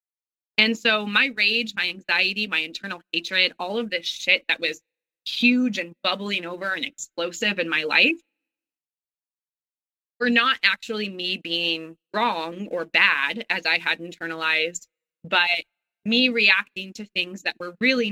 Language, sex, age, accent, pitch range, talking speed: English, female, 20-39, American, 175-235 Hz, 145 wpm